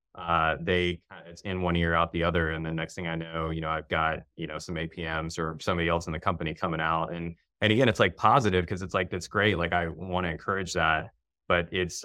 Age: 20-39